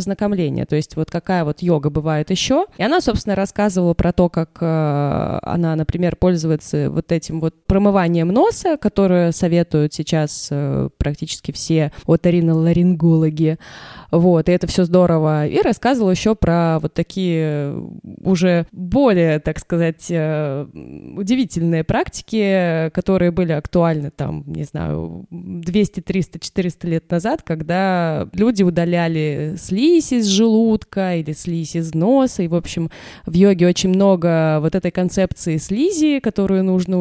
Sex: female